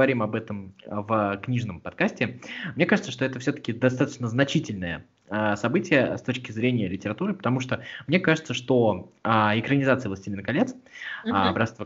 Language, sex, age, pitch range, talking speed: Russian, male, 20-39, 105-135 Hz, 130 wpm